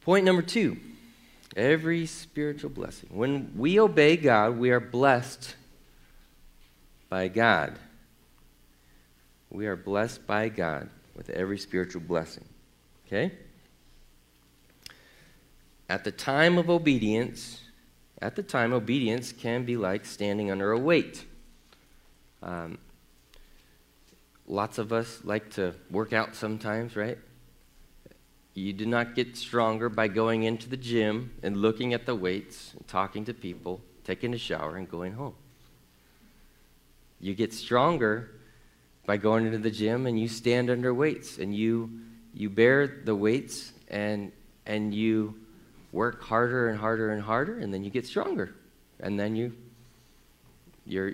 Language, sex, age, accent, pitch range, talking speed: English, male, 40-59, American, 95-120 Hz, 135 wpm